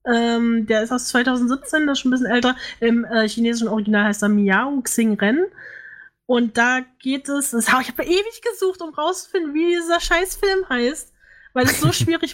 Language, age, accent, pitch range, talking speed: German, 10-29, German, 220-255 Hz, 190 wpm